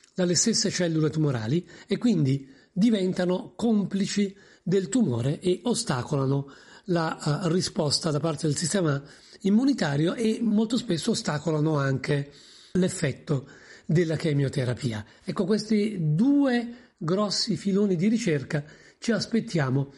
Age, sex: 40-59, male